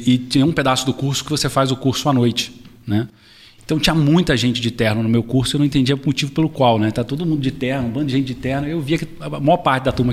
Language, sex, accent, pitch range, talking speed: Portuguese, male, Brazilian, 120-150 Hz, 295 wpm